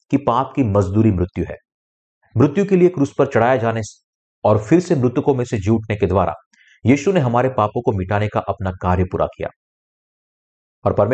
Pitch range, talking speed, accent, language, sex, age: 95-125 Hz, 110 wpm, native, Hindi, male, 50-69